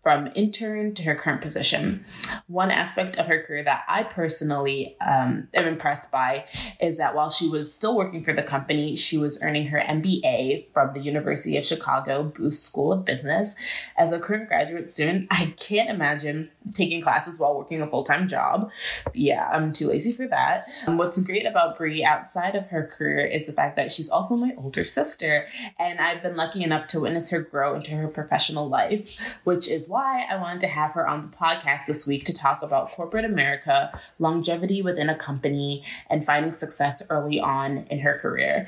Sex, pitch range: female, 150-195 Hz